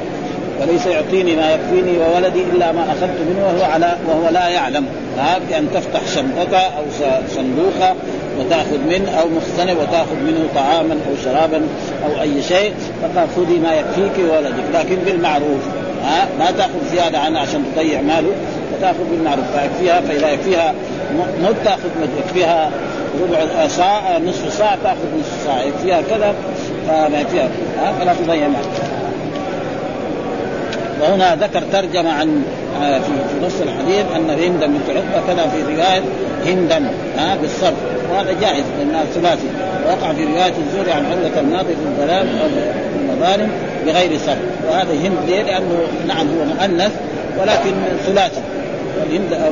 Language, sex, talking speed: Arabic, male, 130 wpm